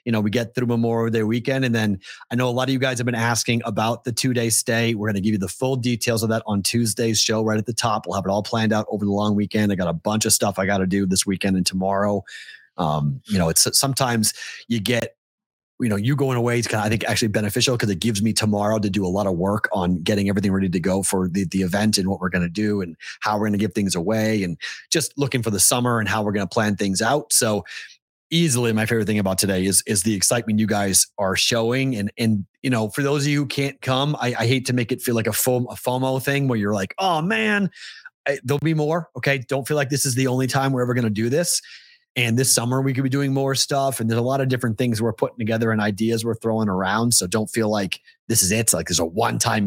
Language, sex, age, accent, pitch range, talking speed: English, male, 30-49, American, 100-125 Hz, 280 wpm